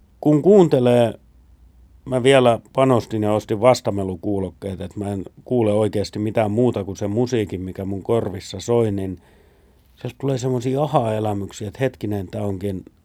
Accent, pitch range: native, 100-130 Hz